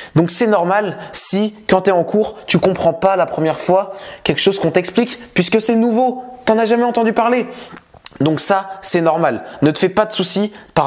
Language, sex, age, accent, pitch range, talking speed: French, male, 20-39, French, 180-215 Hz, 220 wpm